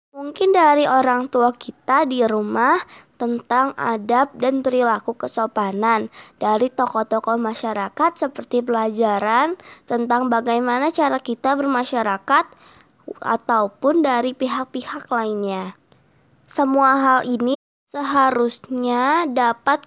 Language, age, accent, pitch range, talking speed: Indonesian, 20-39, native, 230-275 Hz, 95 wpm